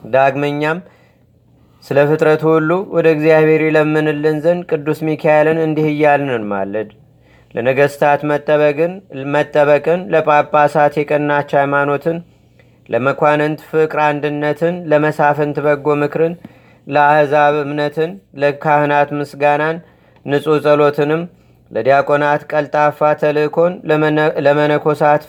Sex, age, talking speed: male, 30-49, 75 wpm